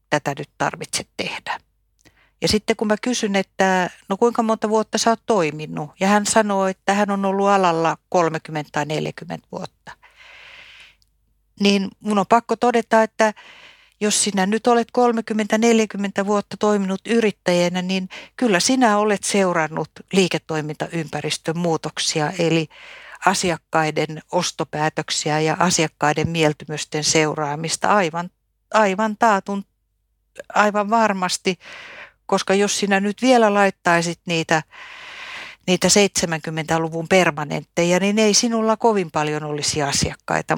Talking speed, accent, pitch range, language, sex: 115 wpm, native, 160-220 Hz, Finnish, female